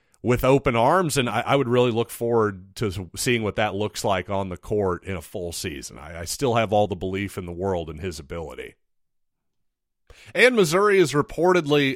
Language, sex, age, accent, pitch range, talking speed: English, male, 30-49, American, 105-145 Hz, 200 wpm